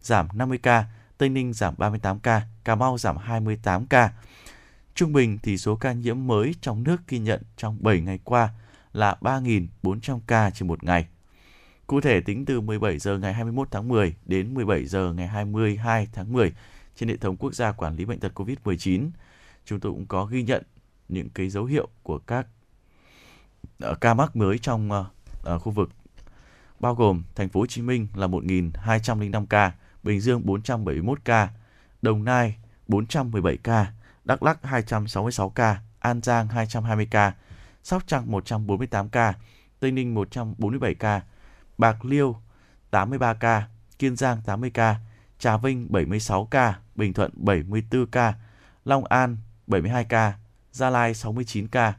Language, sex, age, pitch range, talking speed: Vietnamese, male, 20-39, 100-120 Hz, 160 wpm